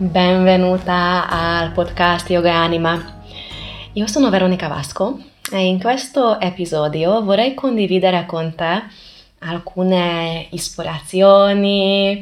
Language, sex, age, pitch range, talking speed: Italian, female, 20-39, 160-190 Hz, 100 wpm